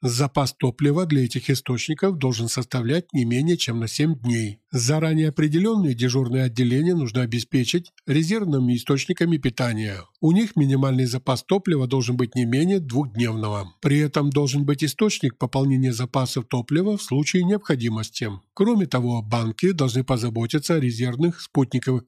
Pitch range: 125-155 Hz